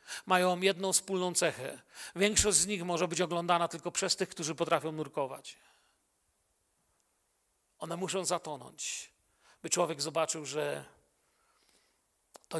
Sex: male